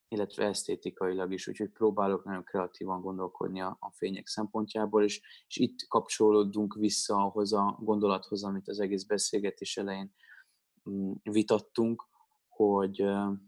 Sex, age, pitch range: male, 20-39, 95-110 Hz